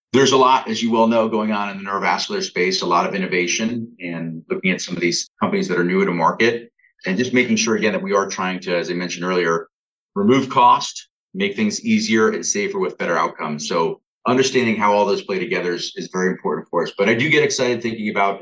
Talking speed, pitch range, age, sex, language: 240 wpm, 90-130 Hz, 30-49, male, English